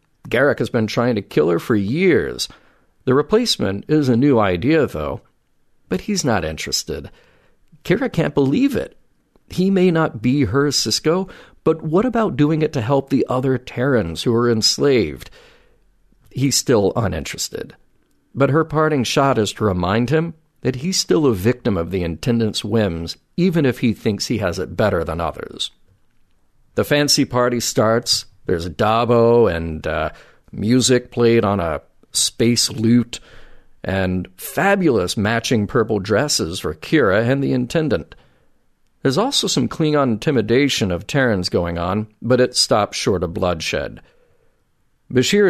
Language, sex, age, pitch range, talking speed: English, male, 40-59, 105-145 Hz, 150 wpm